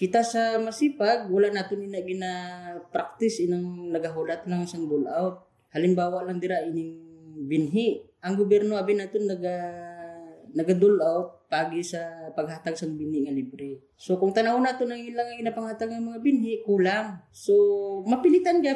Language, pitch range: Filipino, 160-205 Hz